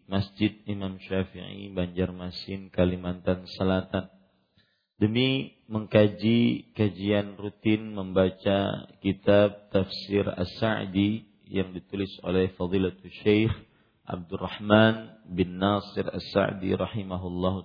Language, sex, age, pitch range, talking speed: Malay, male, 40-59, 95-105 Hz, 80 wpm